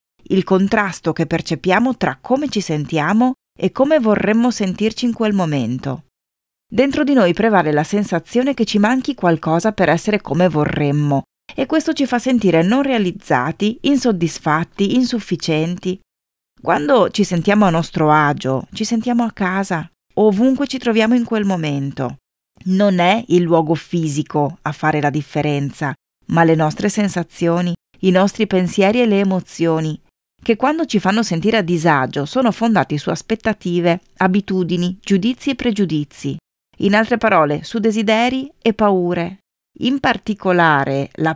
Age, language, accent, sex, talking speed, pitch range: 30-49, Italian, native, female, 140 wpm, 160-220 Hz